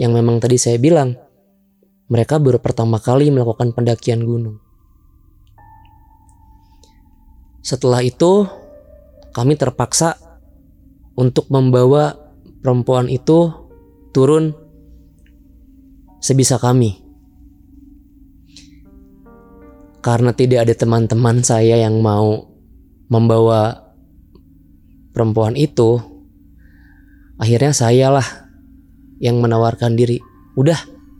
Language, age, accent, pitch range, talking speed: Indonesian, 20-39, native, 105-135 Hz, 75 wpm